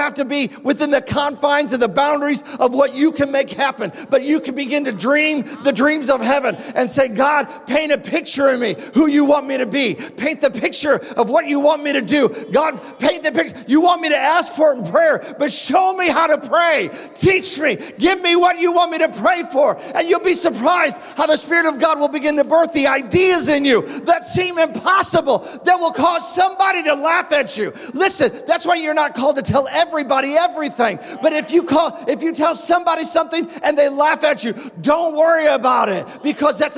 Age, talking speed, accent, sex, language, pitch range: 40-59, 225 wpm, American, male, English, 275-325 Hz